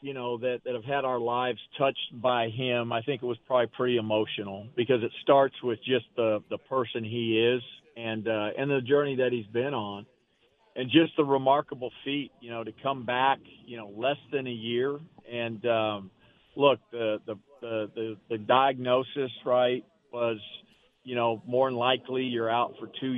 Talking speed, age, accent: 190 wpm, 50-69, American